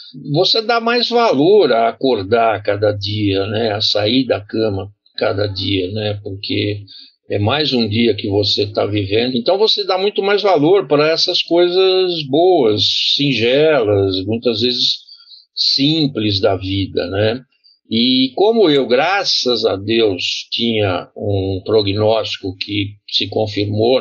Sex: male